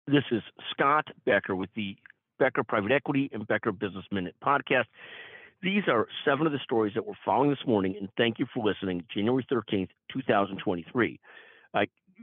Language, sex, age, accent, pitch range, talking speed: English, male, 50-69, American, 115-155 Hz, 160 wpm